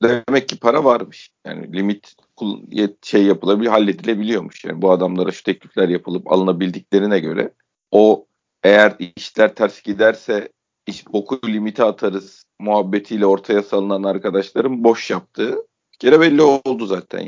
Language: Turkish